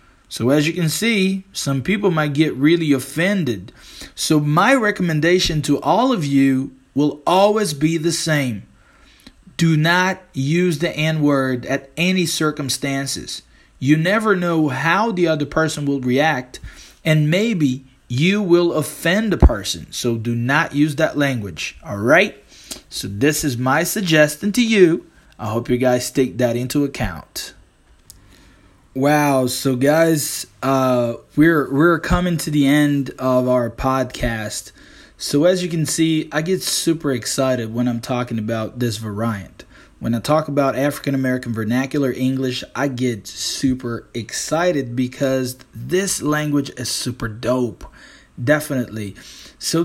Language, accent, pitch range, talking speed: English, American, 125-160 Hz, 140 wpm